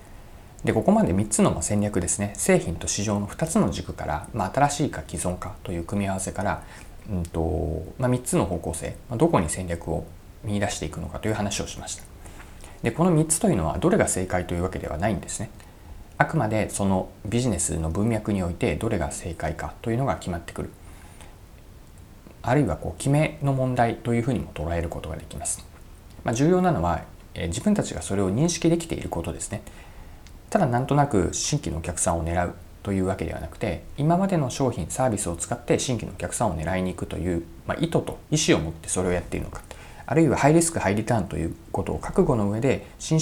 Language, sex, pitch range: Japanese, male, 85-120 Hz